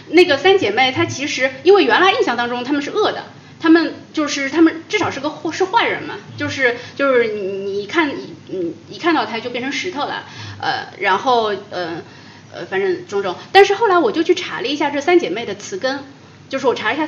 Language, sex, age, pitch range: Chinese, female, 20-39, 245-375 Hz